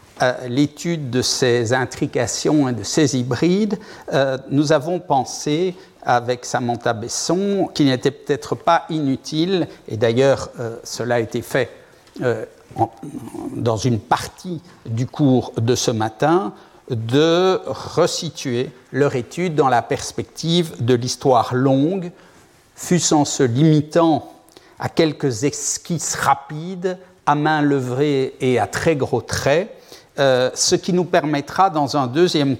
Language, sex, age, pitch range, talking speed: French, male, 60-79, 130-165 Hz, 130 wpm